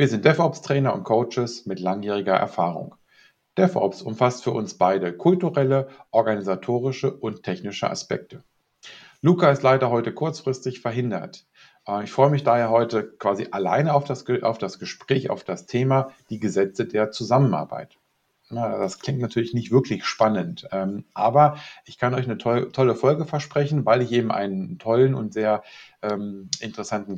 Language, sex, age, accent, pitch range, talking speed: German, male, 40-59, German, 110-140 Hz, 140 wpm